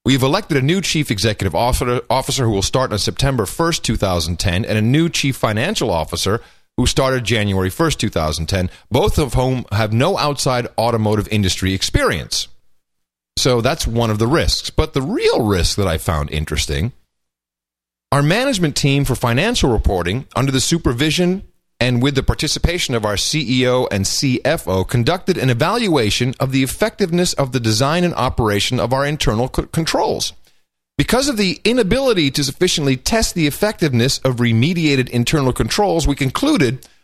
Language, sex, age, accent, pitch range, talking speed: English, male, 40-59, American, 120-170 Hz, 155 wpm